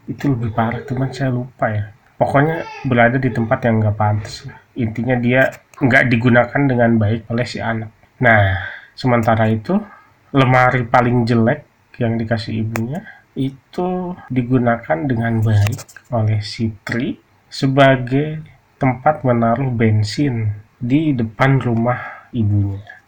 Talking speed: 120 wpm